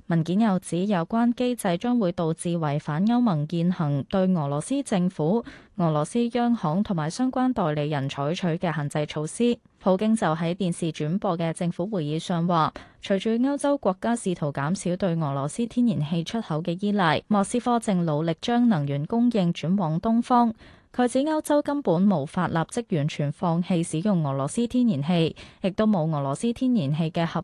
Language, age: Chinese, 20-39